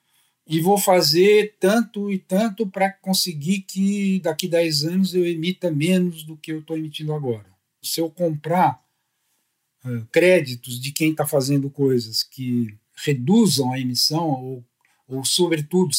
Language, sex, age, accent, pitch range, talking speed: Portuguese, male, 50-69, Brazilian, 135-195 Hz, 145 wpm